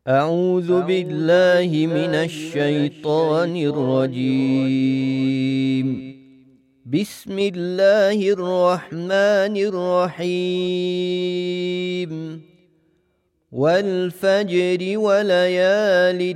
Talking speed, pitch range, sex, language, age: 45 wpm, 145-185 Hz, male, English, 40-59